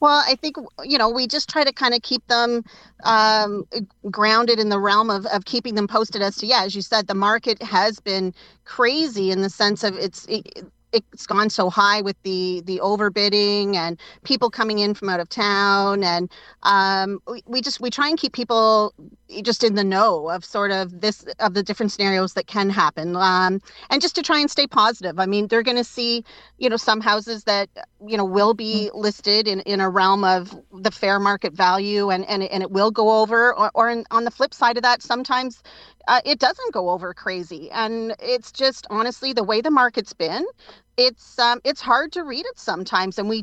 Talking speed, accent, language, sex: 215 wpm, American, English, female